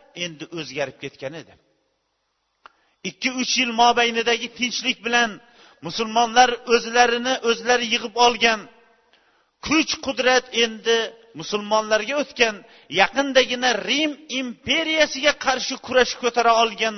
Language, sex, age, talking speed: Bulgarian, male, 40-59, 95 wpm